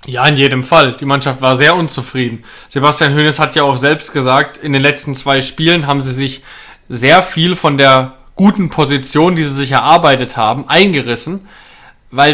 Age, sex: 20-39, male